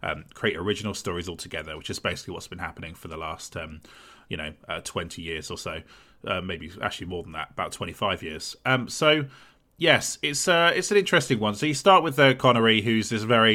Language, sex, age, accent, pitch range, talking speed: English, male, 30-49, British, 95-120 Hz, 220 wpm